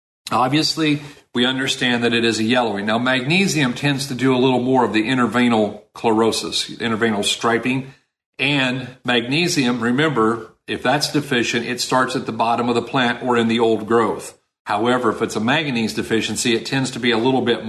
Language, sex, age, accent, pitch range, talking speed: English, male, 50-69, American, 115-140 Hz, 185 wpm